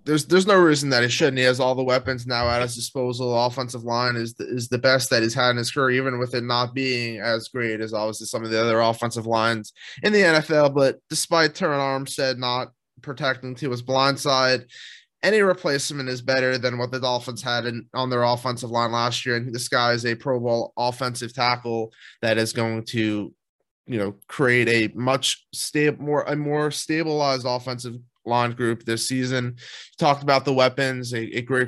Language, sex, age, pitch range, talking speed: English, male, 20-39, 120-150 Hz, 205 wpm